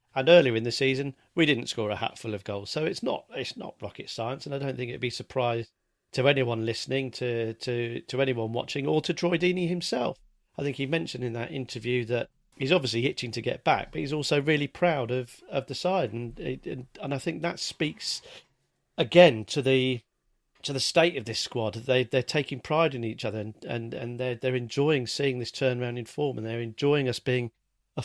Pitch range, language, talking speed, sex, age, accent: 120-155 Hz, English, 215 wpm, male, 40-59, British